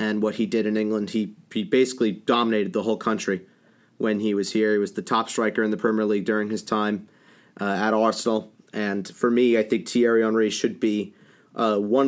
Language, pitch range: English, 110-125 Hz